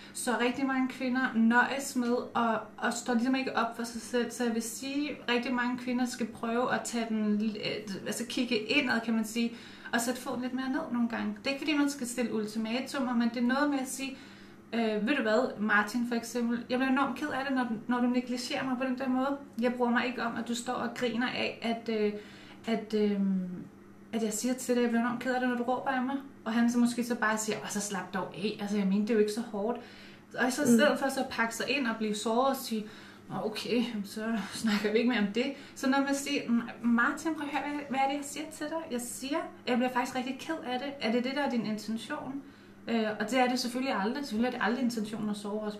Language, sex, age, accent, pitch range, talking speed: Danish, female, 30-49, native, 225-260 Hz, 260 wpm